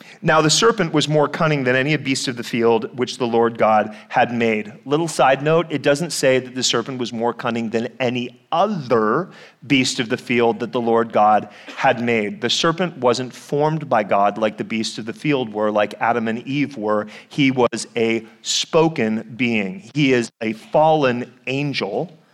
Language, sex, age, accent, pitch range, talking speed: English, male, 30-49, American, 115-145 Hz, 190 wpm